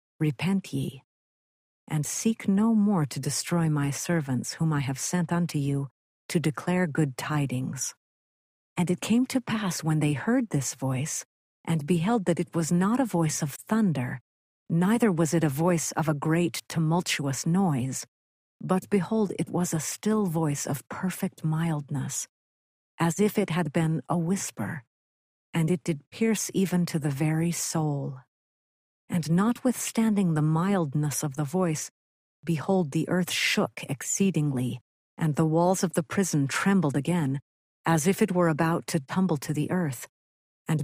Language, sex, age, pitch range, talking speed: English, female, 50-69, 140-185 Hz, 155 wpm